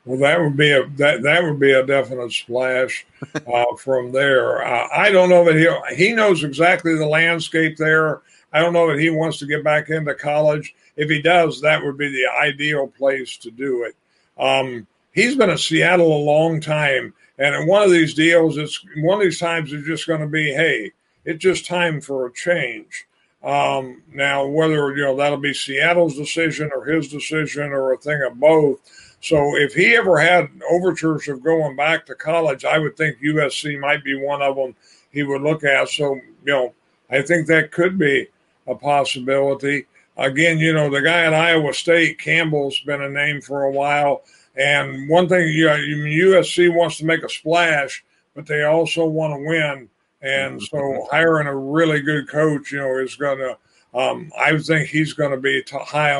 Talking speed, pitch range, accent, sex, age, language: 195 wpm, 140-165 Hz, American, male, 50-69, English